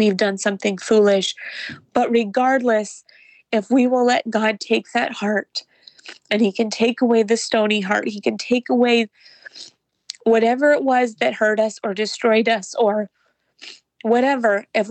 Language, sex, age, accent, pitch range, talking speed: English, female, 30-49, American, 195-235 Hz, 155 wpm